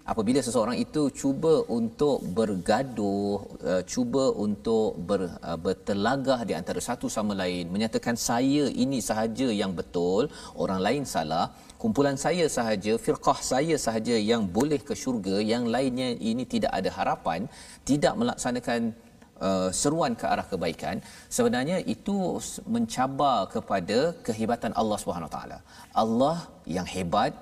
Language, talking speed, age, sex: Malayalam, 125 wpm, 40-59, male